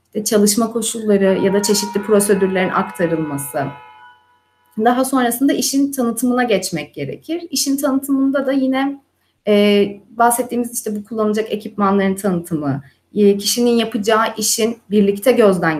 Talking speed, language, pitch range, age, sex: 110 wpm, Turkish, 190-250 Hz, 30-49, female